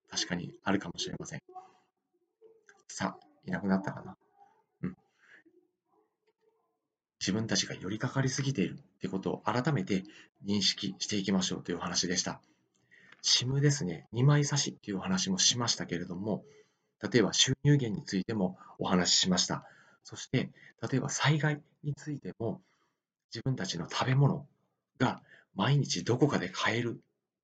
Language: Japanese